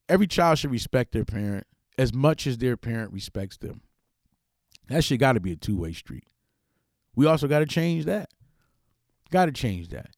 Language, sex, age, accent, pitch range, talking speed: English, male, 40-59, American, 115-160 Hz, 190 wpm